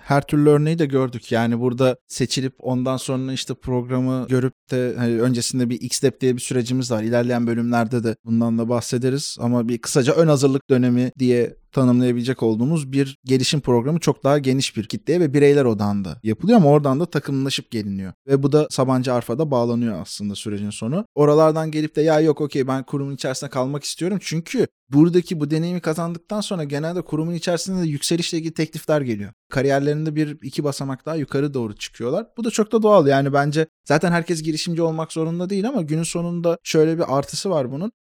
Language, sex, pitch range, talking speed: Turkish, male, 130-160 Hz, 185 wpm